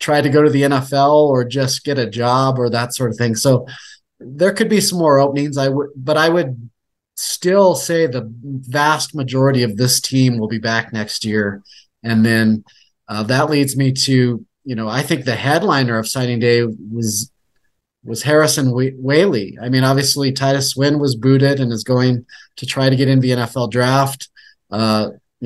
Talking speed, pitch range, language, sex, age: 190 wpm, 120-140 Hz, English, male, 30-49